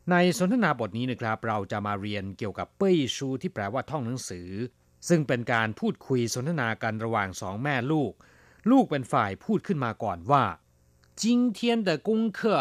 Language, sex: Thai, male